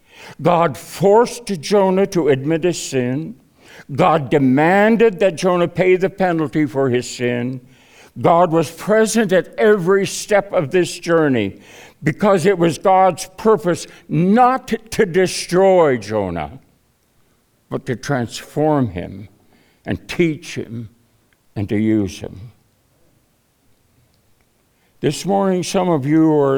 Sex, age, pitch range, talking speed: male, 60-79, 110-165 Hz, 115 wpm